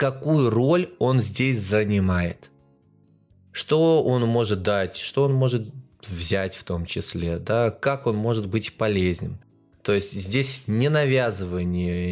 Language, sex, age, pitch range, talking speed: Russian, male, 20-39, 100-135 Hz, 130 wpm